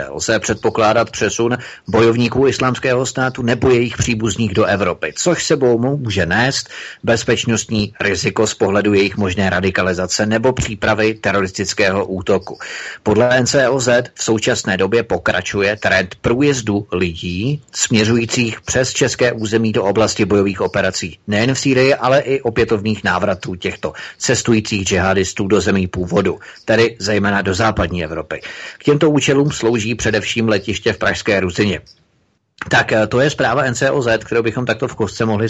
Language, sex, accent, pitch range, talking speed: Czech, male, native, 95-115 Hz, 135 wpm